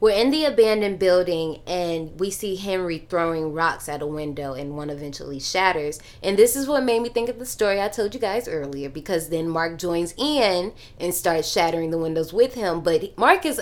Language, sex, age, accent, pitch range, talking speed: English, female, 20-39, American, 160-225 Hz, 210 wpm